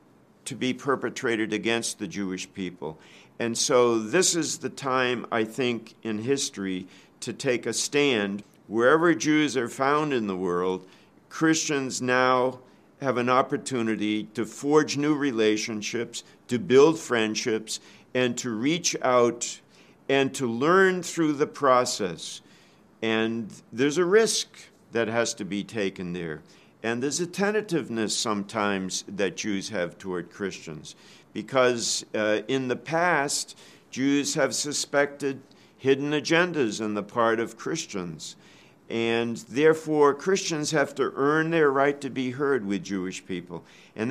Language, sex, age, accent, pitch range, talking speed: English, male, 50-69, American, 110-145 Hz, 135 wpm